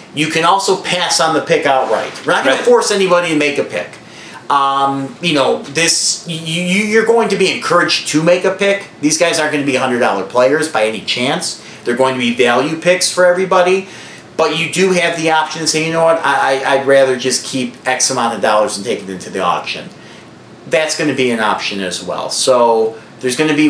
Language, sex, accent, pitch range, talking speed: English, male, American, 125-175 Hz, 230 wpm